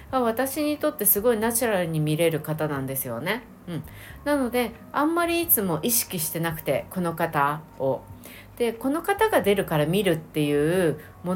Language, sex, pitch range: Japanese, female, 150-210 Hz